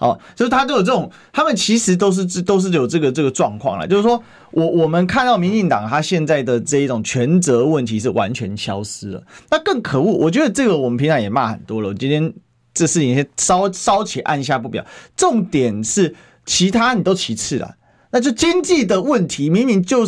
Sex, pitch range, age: male, 150-225 Hz, 30-49